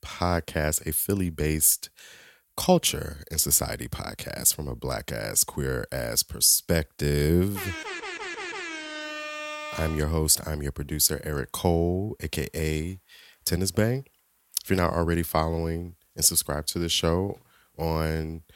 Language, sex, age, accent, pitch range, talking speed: English, male, 30-49, American, 80-115 Hz, 120 wpm